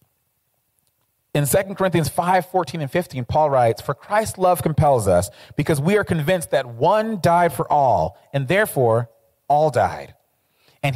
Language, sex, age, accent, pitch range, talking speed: English, male, 30-49, American, 130-185 Hz, 155 wpm